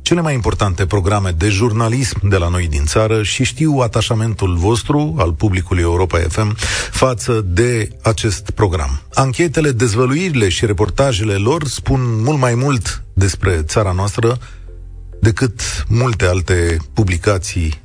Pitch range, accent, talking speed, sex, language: 90-125 Hz, native, 130 wpm, male, Romanian